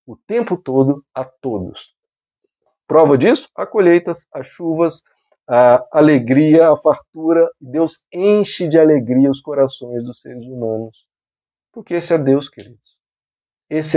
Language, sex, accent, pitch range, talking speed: Portuguese, male, Brazilian, 120-170 Hz, 130 wpm